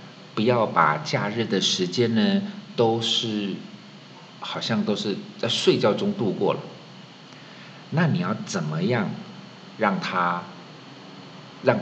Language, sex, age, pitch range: Chinese, male, 50-69, 115-190 Hz